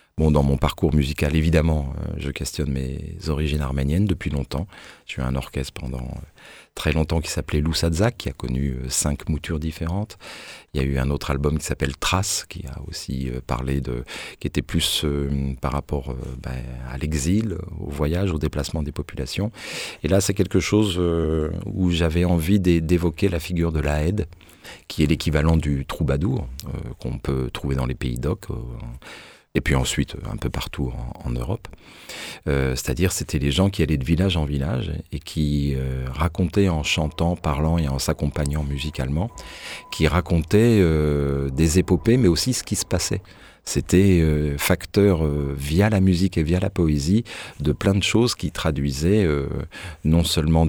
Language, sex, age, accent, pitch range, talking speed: French, male, 40-59, French, 70-90 Hz, 180 wpm